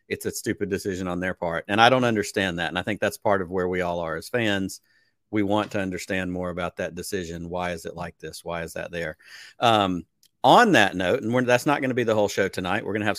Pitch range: 95-120 Hz